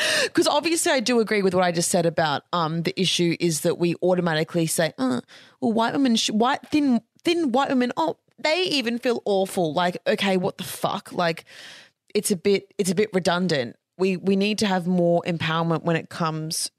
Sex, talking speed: female, 205 wpm